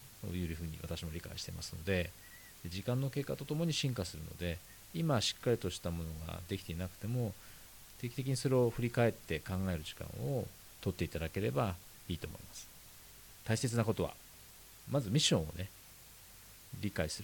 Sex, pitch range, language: male, 90-120 Hz, Japanese